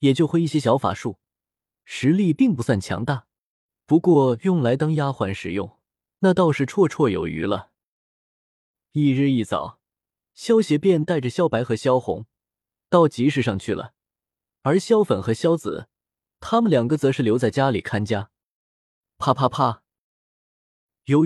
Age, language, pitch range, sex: 20-39, Chinese, 115-170 Hz, male